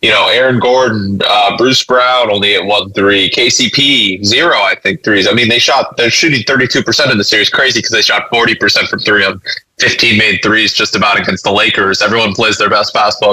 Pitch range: 105-125 Hz